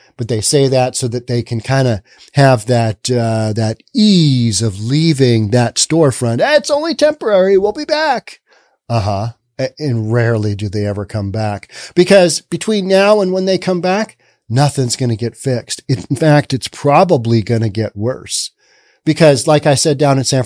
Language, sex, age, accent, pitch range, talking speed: English, male, 40-59, American, 115-160 Hz, 180 wpm